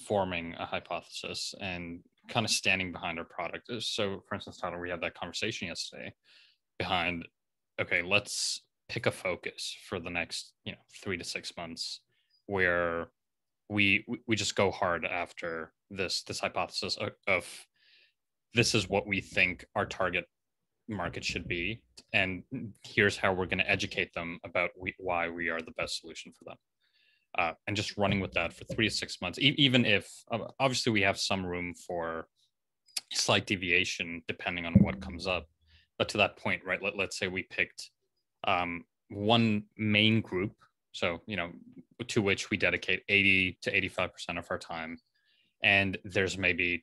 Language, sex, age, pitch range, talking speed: English, male, 20-39, 85-105 Hz, 165 wpm